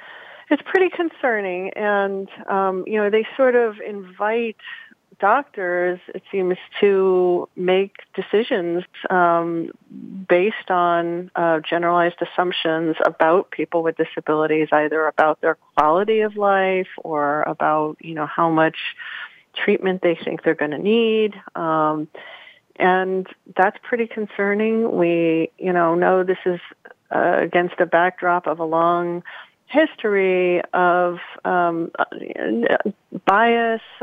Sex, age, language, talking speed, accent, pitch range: female, 40-59, English, 120 wpm, American, 170-210 Hz